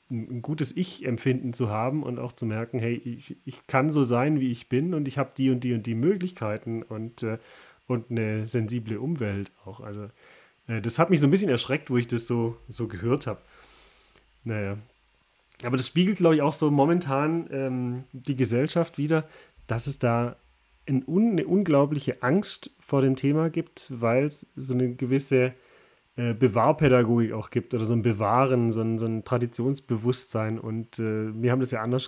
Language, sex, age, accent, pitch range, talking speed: German, male, 30-49, German, 115-135 Hz, 180 wpm